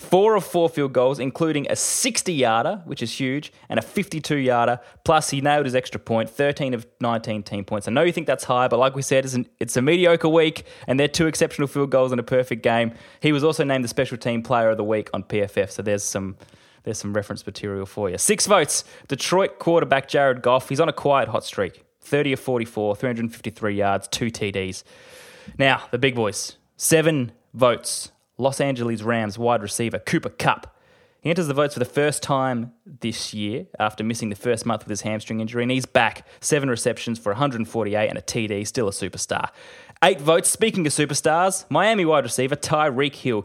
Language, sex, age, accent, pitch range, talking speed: English, male, 20-39, Australian, 110-145 Hz, 205 wpm